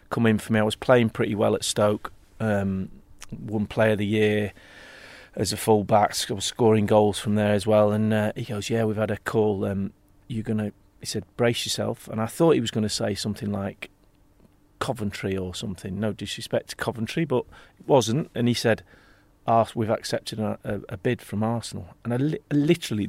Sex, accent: male, British